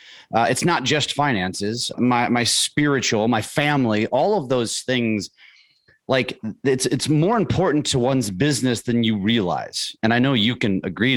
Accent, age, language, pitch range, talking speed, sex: American, 30-49, English, 110-145 Hz, 165 wpm, male